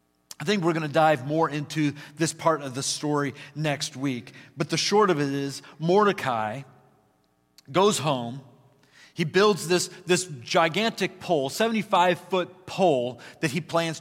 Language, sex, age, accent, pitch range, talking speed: English, male, 40-59, American, 135-195 Hz, 150 wpm